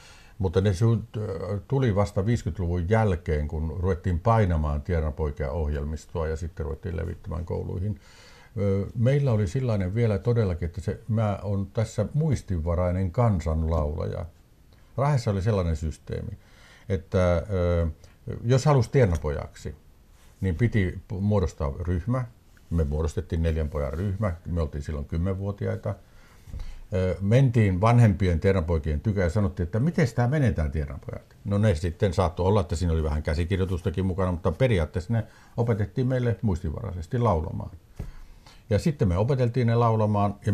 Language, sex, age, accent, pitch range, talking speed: Finnish, male, 60-79, native, 85-115 Hz, 125 wpm